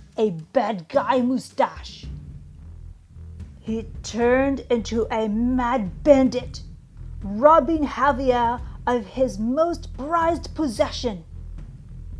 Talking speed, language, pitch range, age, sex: 85 wpm, English, 205-275 Hz, 40-59, female